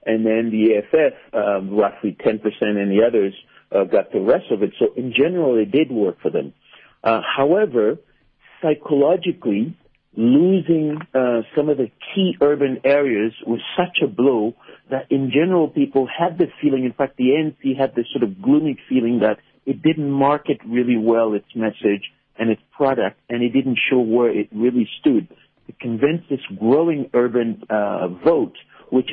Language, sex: English, male